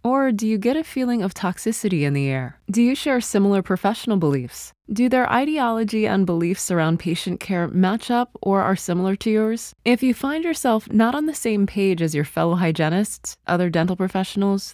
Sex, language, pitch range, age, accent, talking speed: female, English, 170-220 Hz, 20-39, American, 195 wpm